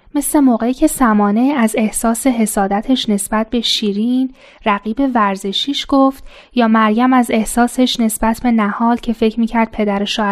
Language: Persian